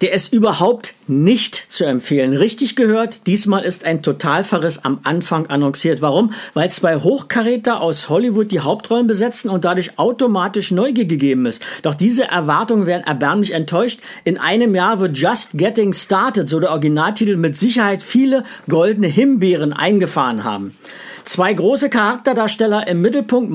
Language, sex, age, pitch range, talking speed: German, male, 50-69, 175-230 Hz, 150 wpm